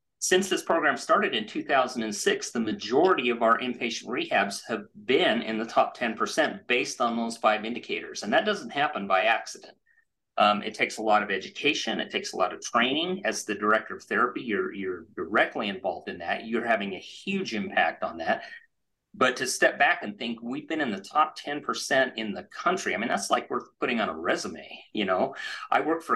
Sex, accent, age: male, American, 40-59